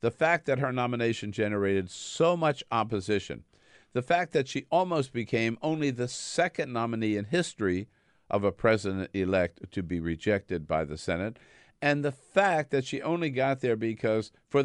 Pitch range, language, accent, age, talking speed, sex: 100-140 Hz, English, American, 50-69, 165 wpm, male